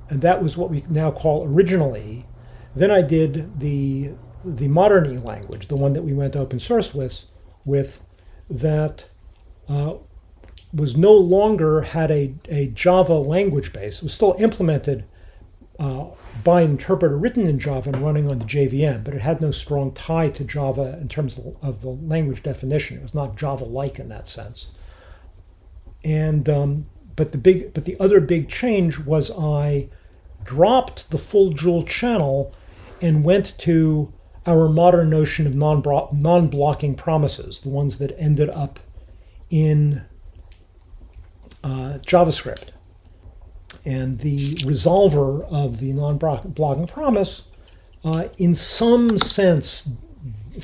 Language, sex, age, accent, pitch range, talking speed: English, male, 50-69, American, 115-160 Hz, 140 wpm